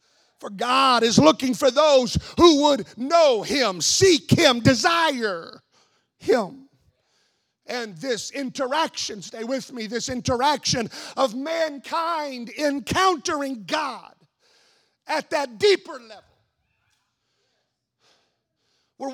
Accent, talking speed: American, 95 wpm